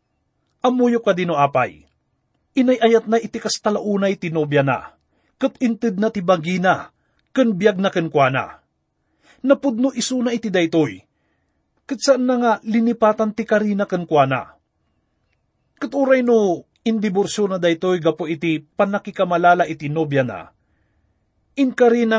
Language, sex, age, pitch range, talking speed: English, male, 30-49, 160-225 Hz, 115 wpm